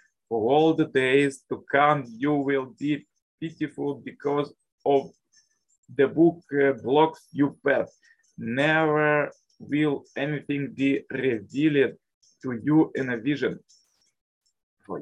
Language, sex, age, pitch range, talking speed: English, male, 20-39, 135-155 Hz, 110 wpm